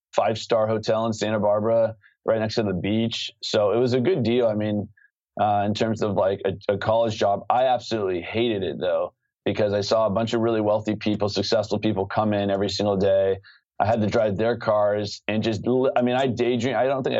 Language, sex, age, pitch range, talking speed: English, male, 20-39, 105-120 Hz, 225 wpm